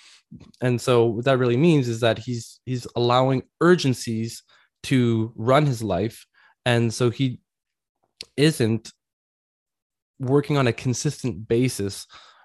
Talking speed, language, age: 120 wpm, English, 20-39